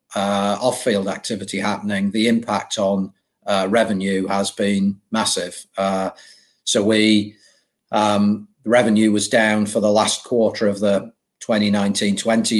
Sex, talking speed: male, 125 wpm